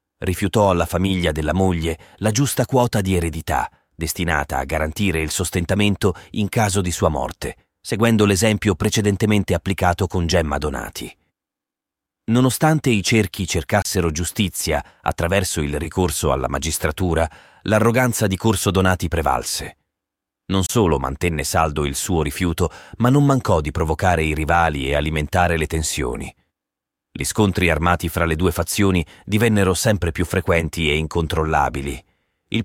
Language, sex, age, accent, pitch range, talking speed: Italian, male, 30-49, native, 80-105 Hz, 135 wpm